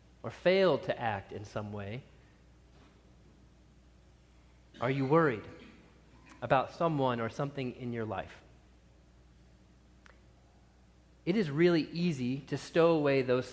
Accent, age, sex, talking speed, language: American, 30-49, male, 110 wpm, English